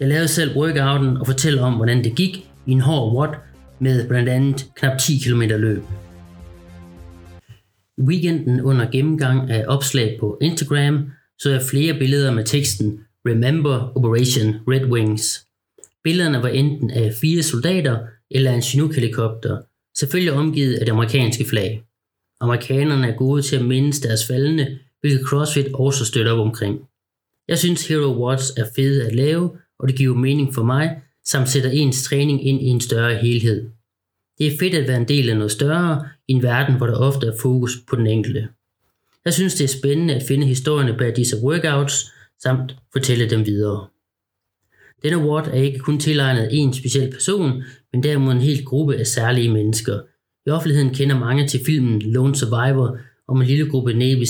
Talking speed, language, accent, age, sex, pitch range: 175 wpm, Danish, native, 30-49, male, 115-140 Hz